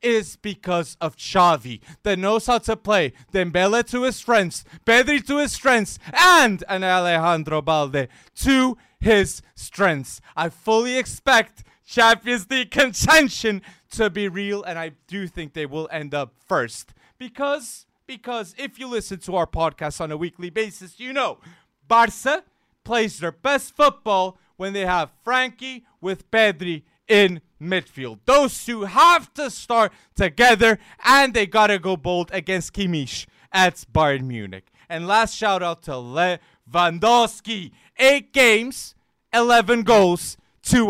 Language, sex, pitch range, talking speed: English, male, 170-240 Hz, 140 wpm